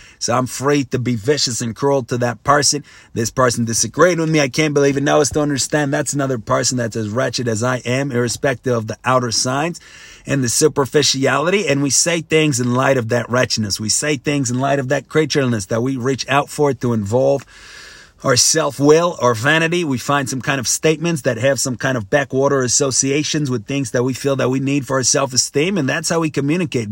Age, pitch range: 30-49, 120-145 Hz